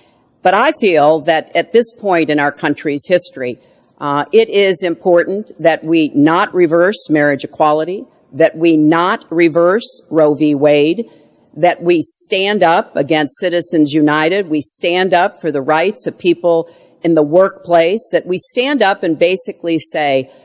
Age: 50-69